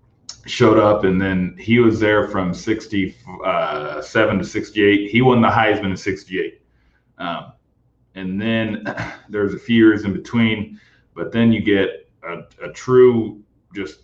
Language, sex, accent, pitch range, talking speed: English, male, American, 95-115 Hz, 150 wpm